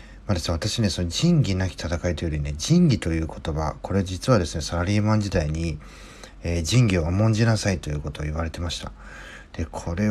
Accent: native